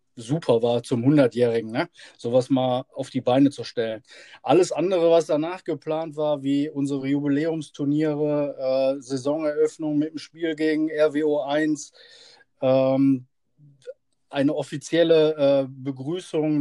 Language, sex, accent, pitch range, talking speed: German, male, German, 135-155 Hz, 115 wpm